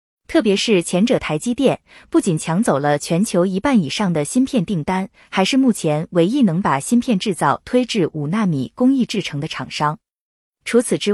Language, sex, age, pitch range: Chinese, female, 20-39, 170-245 Hz